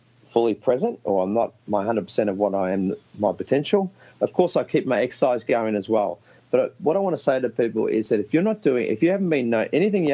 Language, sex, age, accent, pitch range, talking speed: English, male, 30-49, Australian, 110-140 Hz, 250 wpm